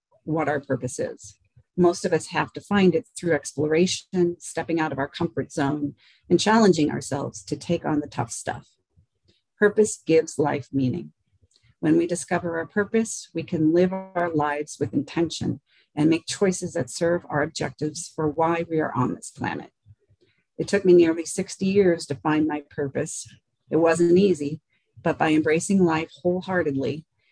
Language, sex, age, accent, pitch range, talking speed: English, female, 40-59, American, 145-170 Hz, 165 wpm